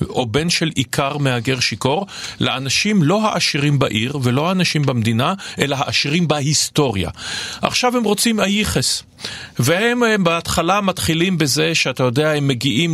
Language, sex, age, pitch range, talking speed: Hebrew, male, 40-59, 125-165 Hz, 130 wpm